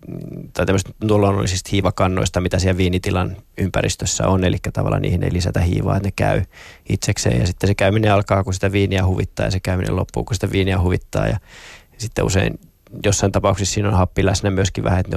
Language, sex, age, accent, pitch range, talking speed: Finnish, male, 20-39, native, 95-105 Hz, 190 wpm